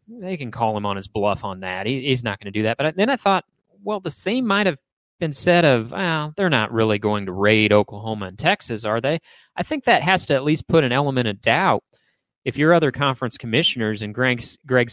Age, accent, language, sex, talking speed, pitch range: 30-49, American, English, male, 235 wpm, 115-165 Hz